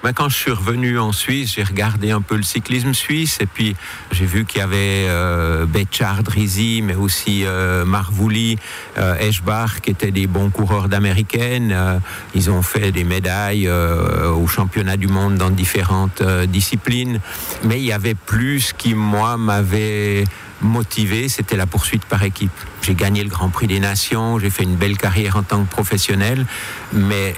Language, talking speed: French, 180 wpm